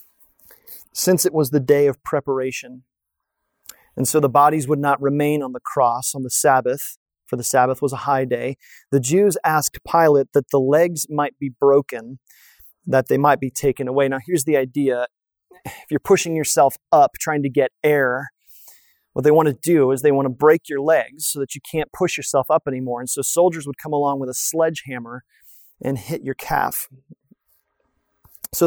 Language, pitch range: English, 135-155 Hz